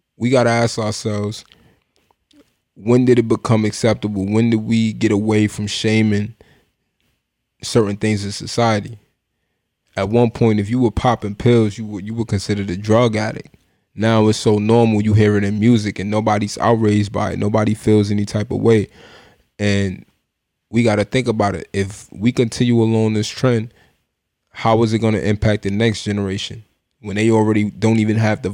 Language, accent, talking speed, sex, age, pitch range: English, American, 180 wpm, male, 20-39, 105-115 Hz